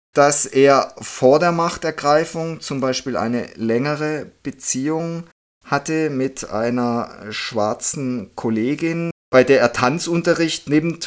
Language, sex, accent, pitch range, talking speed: German, male, German, 110-140 Hz, 110 wpm